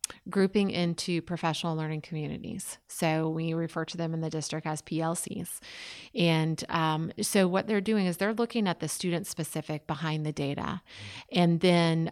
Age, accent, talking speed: 30-49, American, 165 wpm